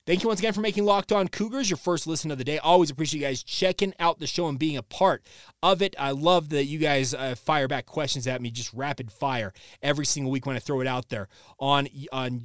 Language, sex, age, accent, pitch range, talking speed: English, male, 30-49, American, 135-185 Hz, 260 wpm